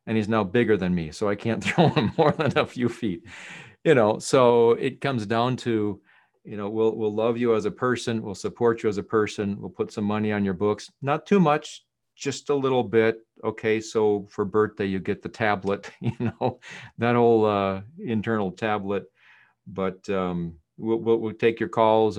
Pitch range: 95-120 Hz